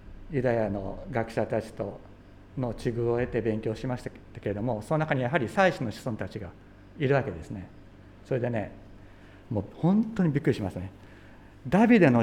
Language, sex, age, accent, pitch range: Japanese, male, 60-79, native, 100-140 Hz